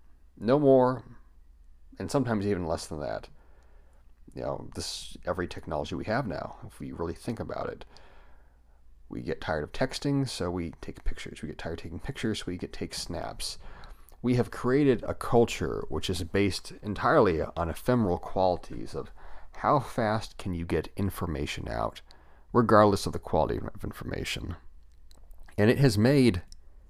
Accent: American